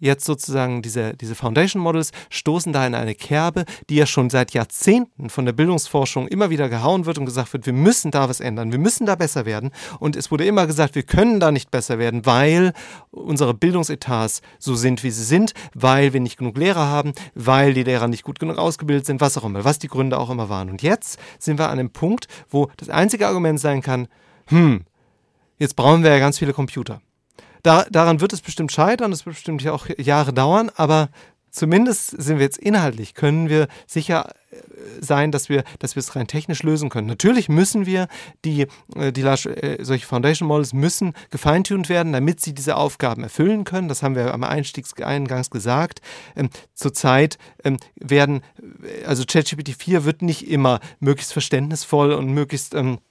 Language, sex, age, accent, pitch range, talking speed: German, male, 40-59, German, 130-165 Hz, 190 wpm